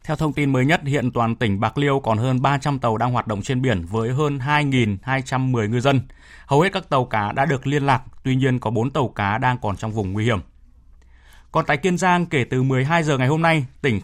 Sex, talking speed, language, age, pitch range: male, 245 wpm, Vietnamese, 20-39, 110-145 Hz